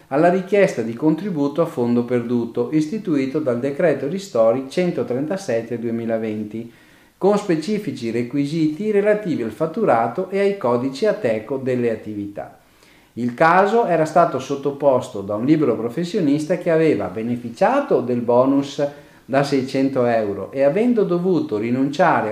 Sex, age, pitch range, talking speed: male, 40-59, 120-180 Hz, 125 wpm